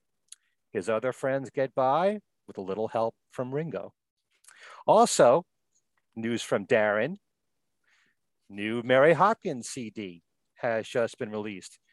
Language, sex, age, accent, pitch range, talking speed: English, male, 40-59, American, 115-165 Hz, 115 wpm